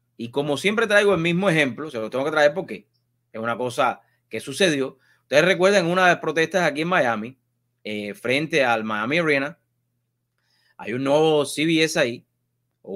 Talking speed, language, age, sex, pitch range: 175 wpm, English, 30-49, male, 140-200 Hz